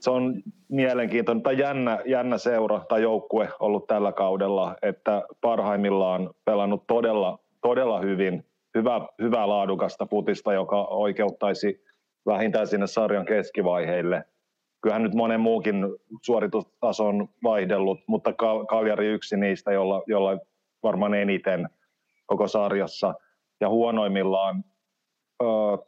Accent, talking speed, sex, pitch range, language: native, 115 wpm, male, 100-115 Hz, Finnish